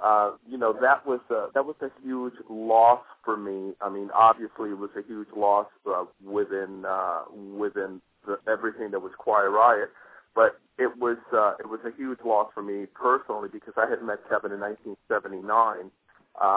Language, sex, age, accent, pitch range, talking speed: English, male, 40-59, American, 100-120 Hz, 180 wpm